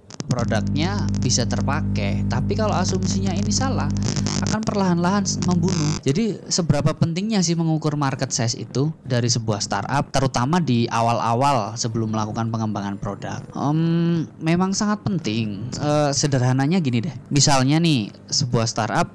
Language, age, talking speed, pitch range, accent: Indonesian, 20-39, 130 wpm, 115-170 Hz, native